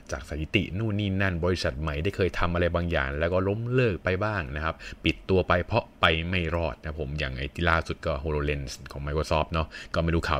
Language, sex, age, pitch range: Thai, male, 20-39, 75-95 Hz